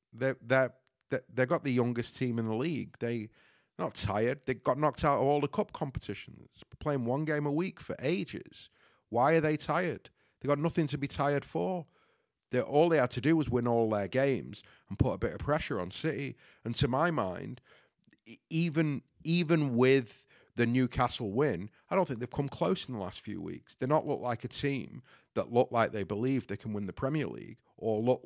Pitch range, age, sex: 110-150 Hz, 40-59, male